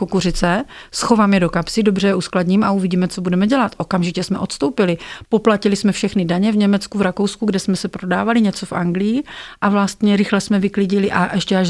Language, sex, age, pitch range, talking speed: Slovak, female, 40-59, 185-225 Hz, 200 wpm